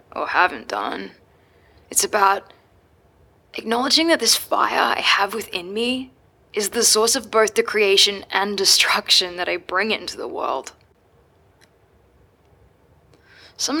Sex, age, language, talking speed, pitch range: female, 10-29, English, 125 wpm, 170-245 Hz